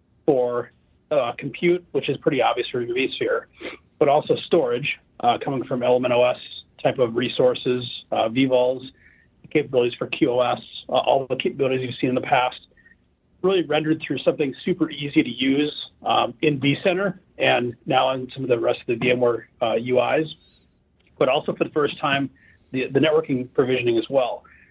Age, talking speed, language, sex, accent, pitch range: 40-59, 170 wpm, English, male, American, 125-155 Hz